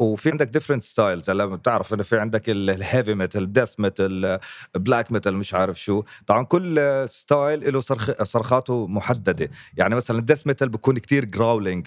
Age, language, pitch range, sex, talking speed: 30-49, Arabic, 105-135 Hz, male, 165 wpm